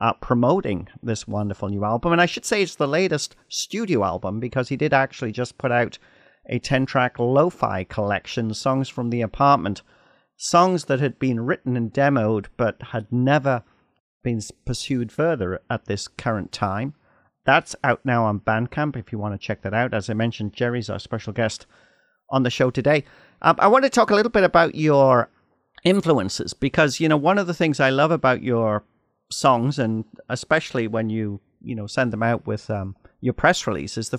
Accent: British